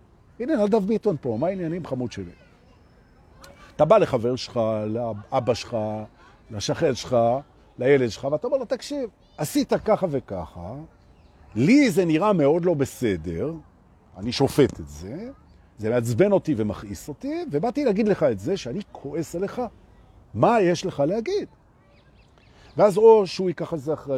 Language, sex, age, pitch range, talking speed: Hebrew, male, 50-69, 105-170 Hz, 90 wpm